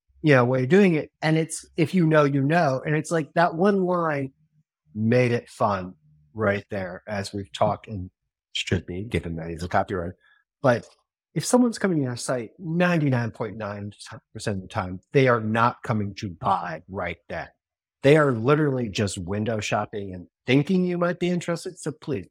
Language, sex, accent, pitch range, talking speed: English, male, American, 100-145 Hz, 180 wpm